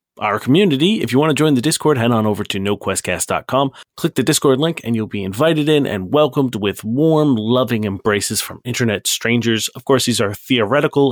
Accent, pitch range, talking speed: American, 110-155 Hz, 200 wpm